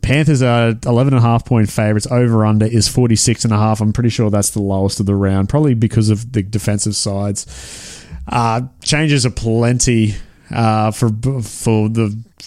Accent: Australian